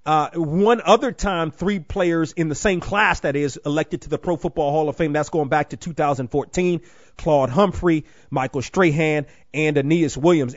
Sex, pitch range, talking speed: male, 145-180 Hz, 180 wpm